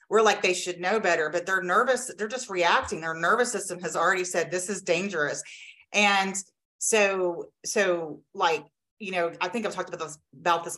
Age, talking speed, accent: 30-49, 190 wpm, American